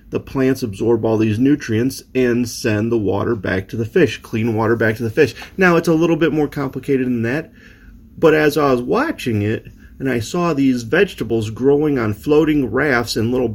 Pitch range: 105-140 Hz